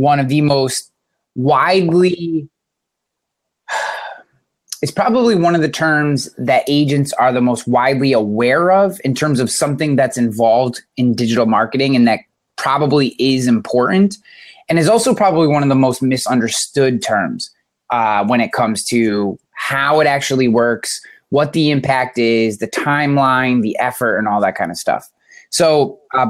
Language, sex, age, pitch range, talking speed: English, male, 20-39, 115-150 Hz, 155 wpm